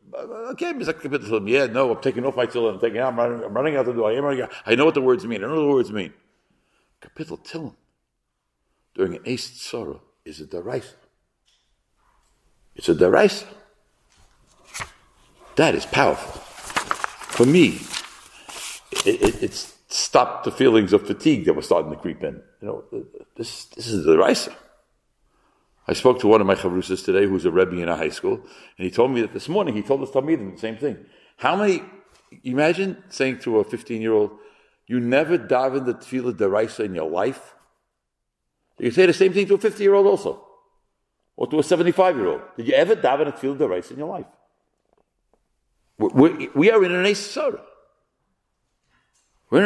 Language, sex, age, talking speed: English, male, 60-79, 195 wpm